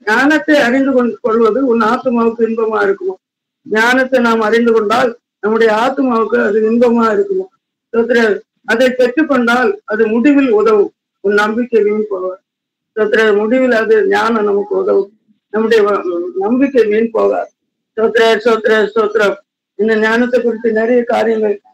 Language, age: Tamil, 50-69